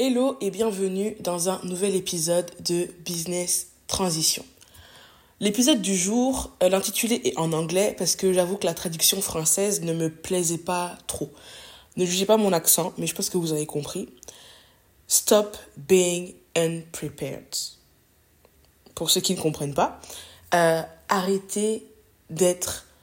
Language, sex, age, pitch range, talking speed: French, female, 20-39, 165-200 Hz, 140 wpm